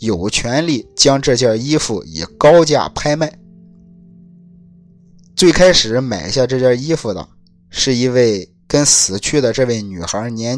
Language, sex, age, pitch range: Chinese, male, 20-39, 95-135 Hz